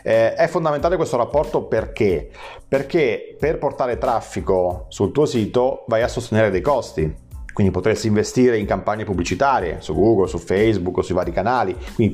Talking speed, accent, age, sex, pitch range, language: 165 wpm, native, 30-49, male, 95-125 Hz, Italian